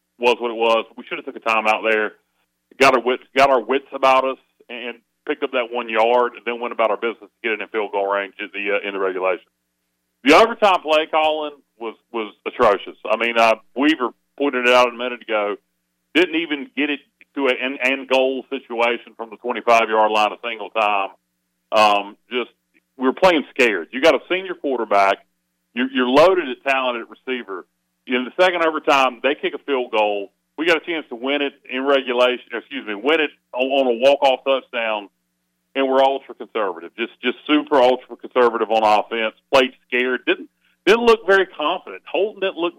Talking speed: 195 wpm